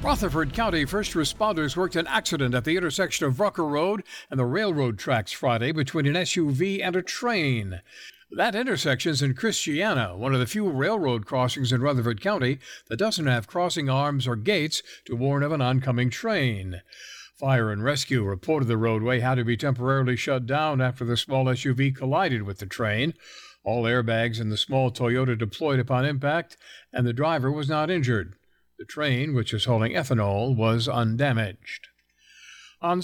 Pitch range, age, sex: 120-150 Hz, 60-79, male